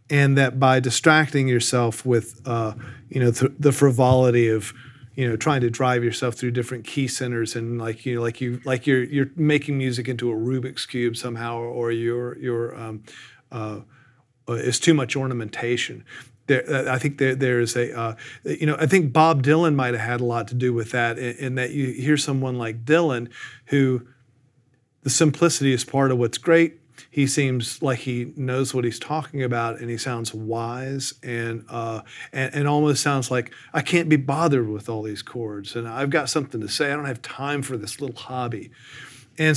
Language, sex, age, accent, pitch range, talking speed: English, male, 40-59, American, 120-145 Hz, 200 wpm